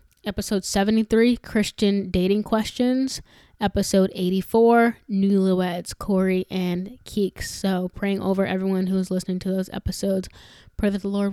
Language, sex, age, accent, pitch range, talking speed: English, female, 10-29, American, 195-235 Hz, 140 wpm